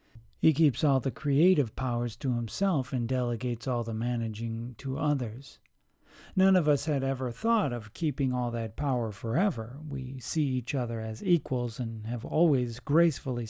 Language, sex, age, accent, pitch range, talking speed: English, male, 40-59, American, 120-150 Hz, 165 wpm